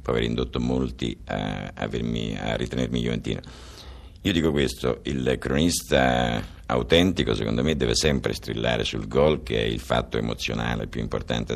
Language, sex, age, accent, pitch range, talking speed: Italian, male, 50-69, native, 65-80 Hz, 155 wpm